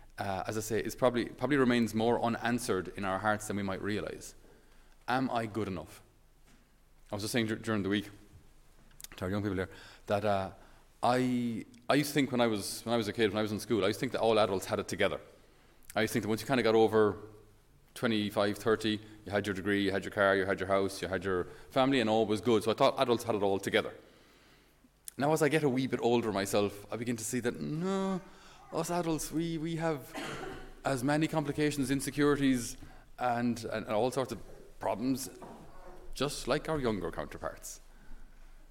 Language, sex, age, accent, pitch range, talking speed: English, male, 30-49, Irish, 105-135 Hz, 220 wpm